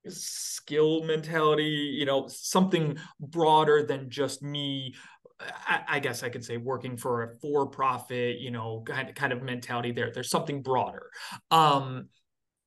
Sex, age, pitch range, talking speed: male, 20-39, 130-155 Hz, 140 wpm